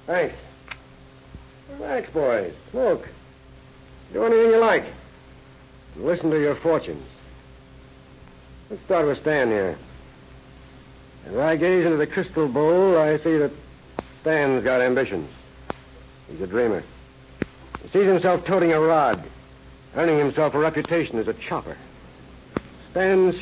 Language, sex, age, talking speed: English, male, 60-79, 120 wpm